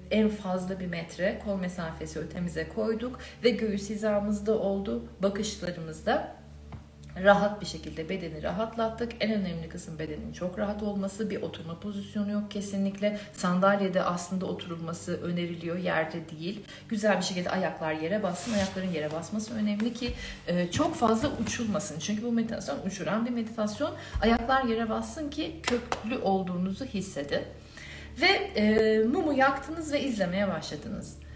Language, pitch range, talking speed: Turkish, 170-230 Hz, 135 wpm